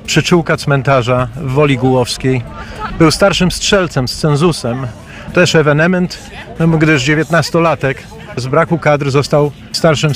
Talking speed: 110 wpm